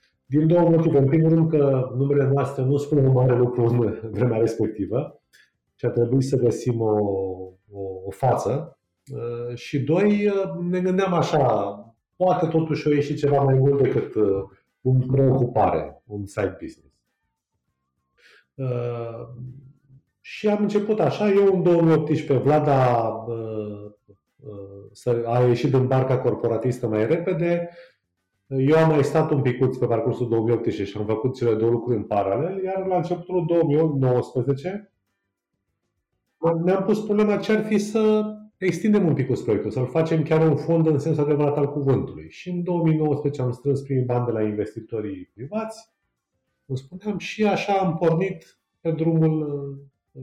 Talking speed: 145 wpm